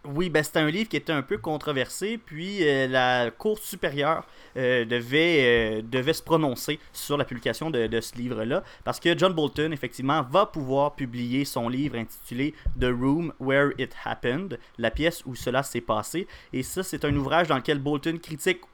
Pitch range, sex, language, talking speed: 125-165 Hz, male, French, 190 wpm